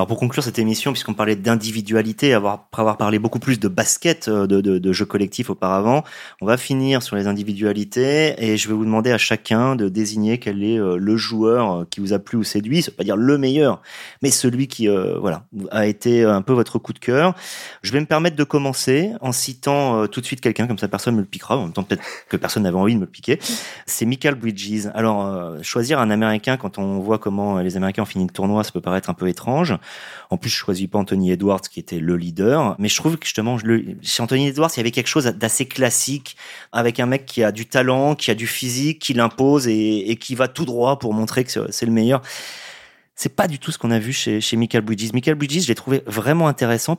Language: French